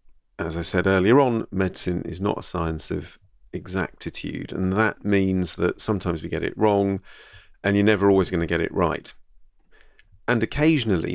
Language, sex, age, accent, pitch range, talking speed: English, male, 40-59, British, 85-100 Hz, 170 wpm